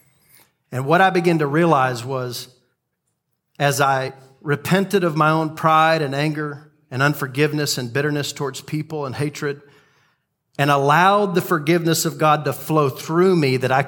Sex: male